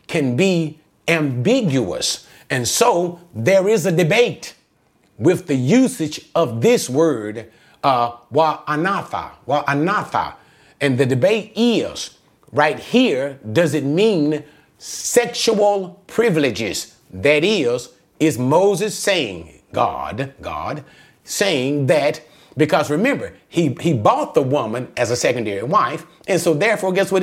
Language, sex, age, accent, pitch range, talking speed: English, male, 40-59, American, 145-205 Hz, 125 wpm